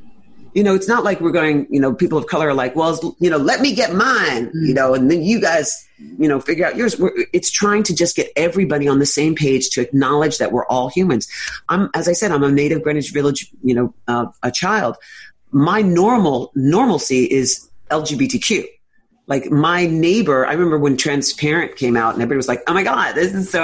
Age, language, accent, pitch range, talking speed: 40-59, English, American, 140-175 Hz, 220 wpm